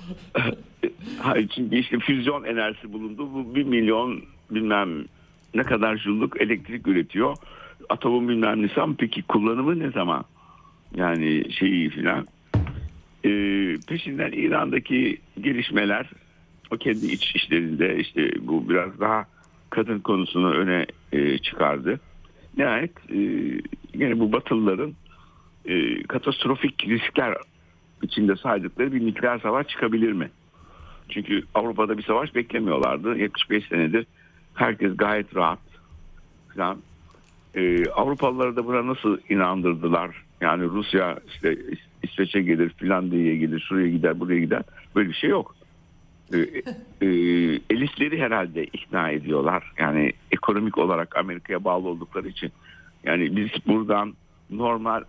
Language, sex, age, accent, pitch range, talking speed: Turkish, male, 60-79, native, 85-115 Hz, 115 wpm